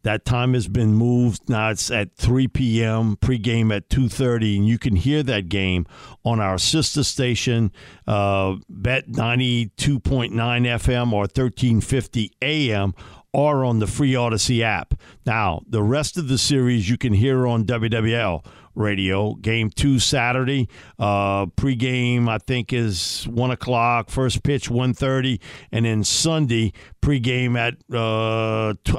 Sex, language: male, English